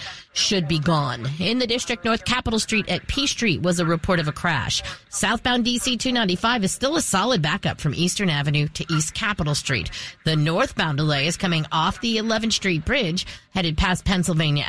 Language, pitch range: English, 160-210 Hz